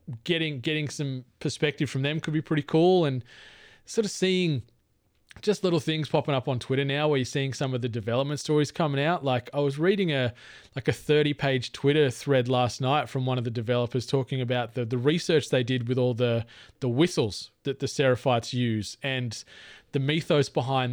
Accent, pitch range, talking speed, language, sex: Australian, 125-150 Hz, 200 wpm, English, male